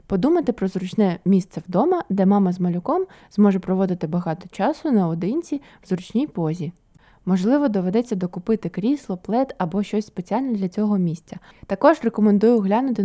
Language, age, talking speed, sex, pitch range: Ukrainian, 20-39, 145 wpm, female, 185-225 Hz